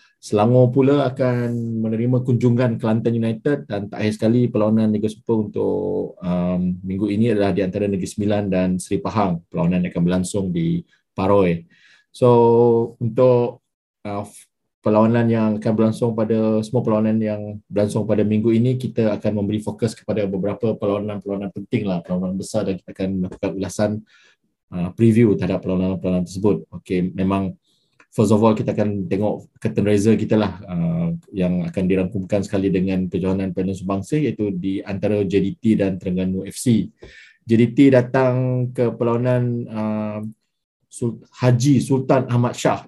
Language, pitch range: Malay, 95-120 Hz